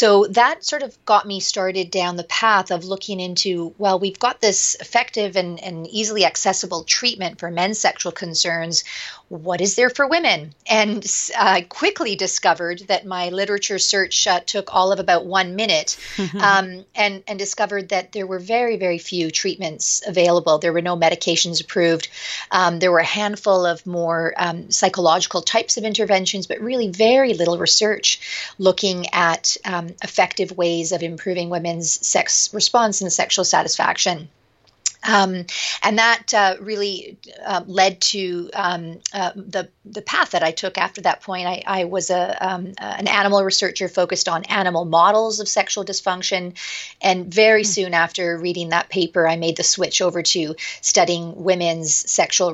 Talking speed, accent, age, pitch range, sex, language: 165 wpm, American, 40-59, 175-200 Hz, female, English